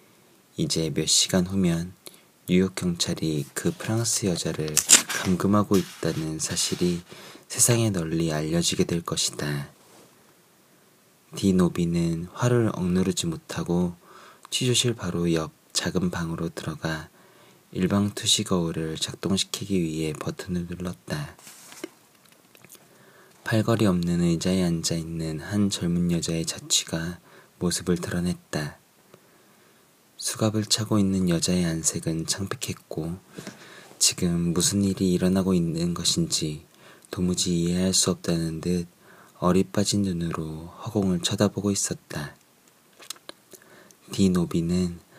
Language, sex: Korean, male